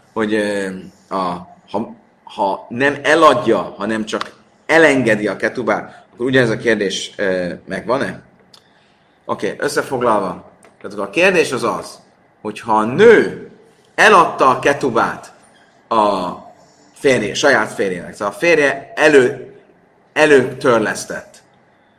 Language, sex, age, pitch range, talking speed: Hungarian, male, 30-49, 110-135 Hz, 110 wpm